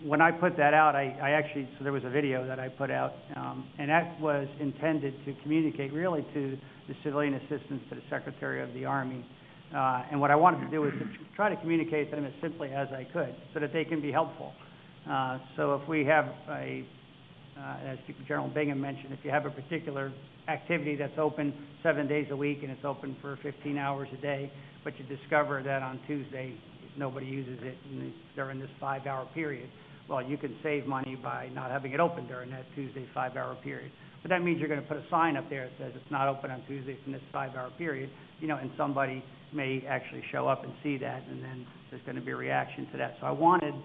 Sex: male